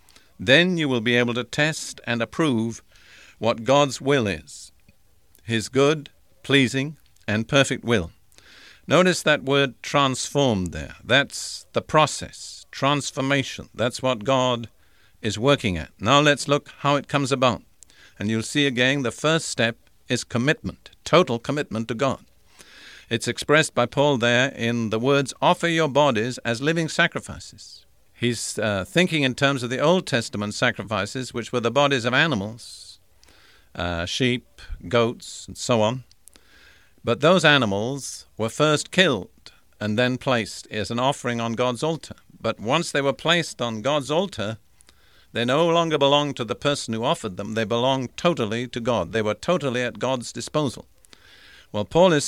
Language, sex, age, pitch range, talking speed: English, male, 50-69, 110-145 Hz, 155 wpm